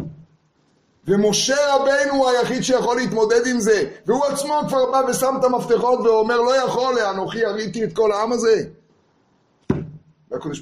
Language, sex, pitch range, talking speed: Hebrew, male, 155-235 Hz, 140 wpm